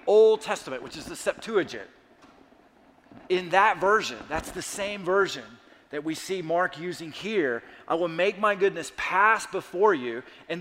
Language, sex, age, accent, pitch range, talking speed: English, male, 30-49, American, 165-210 Hz, 160 wpm